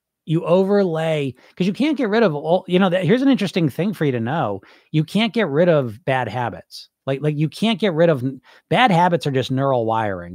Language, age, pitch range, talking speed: English, 40-59, 125-175 Hz, 230 wpm